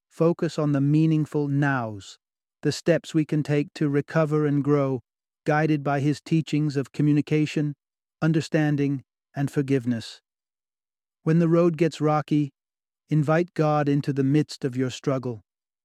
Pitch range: 130-155 Hz